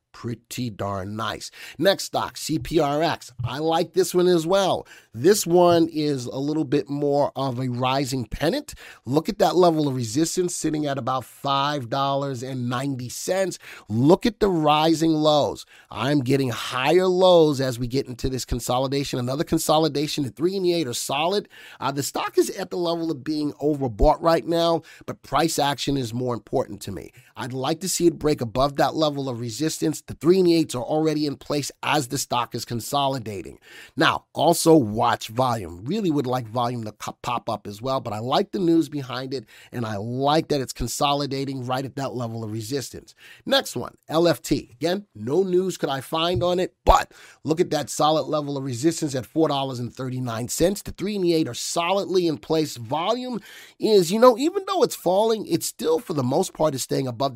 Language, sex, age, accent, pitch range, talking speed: English, male, 30-49, American, 125-165 Hz, 190 wpm